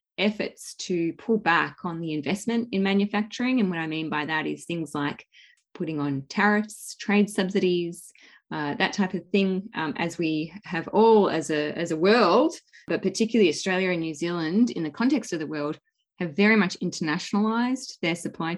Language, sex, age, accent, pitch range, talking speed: English, female, 20-39, Australian, 165-210 Hz, 180 wpm